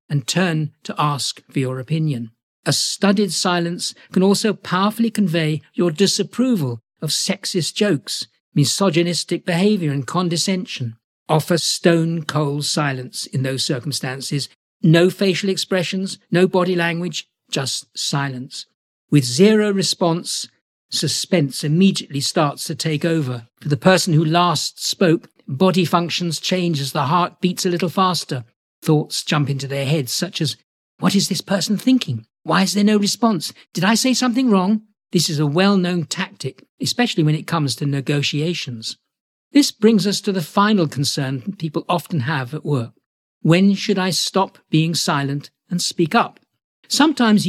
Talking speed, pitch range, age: 150 wpm, 145-190 Hz, 50-69